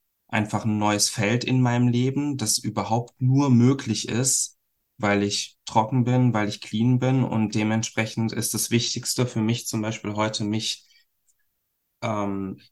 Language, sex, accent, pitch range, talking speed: German, male, German, 100-120 Hz, 150 wpm